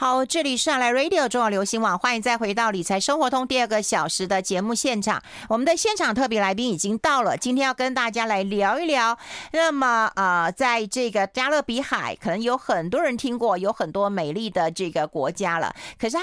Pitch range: 195-265 Hz